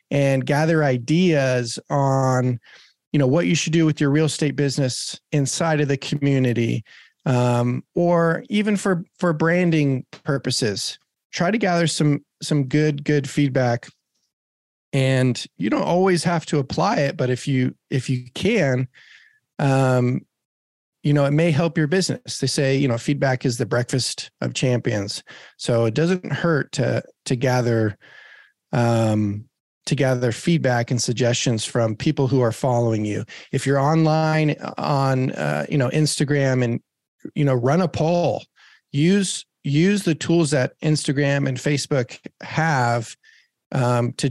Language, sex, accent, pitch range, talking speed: English, male, American, 125-150 Hz, 150 wpm